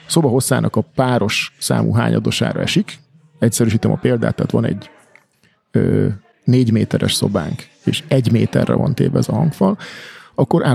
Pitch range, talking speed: 115-145 Hz, 140 wpm